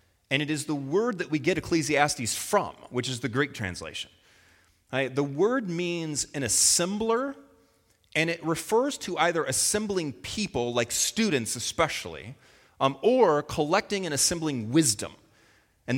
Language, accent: English, American